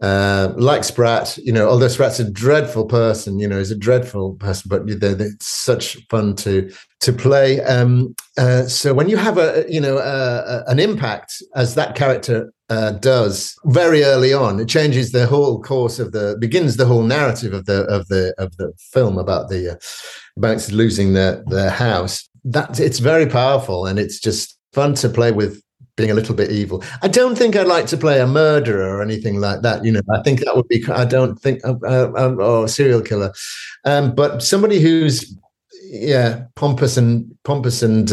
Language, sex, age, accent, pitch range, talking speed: English, male, 50-69, British, 110-145 Hz, 195 wpm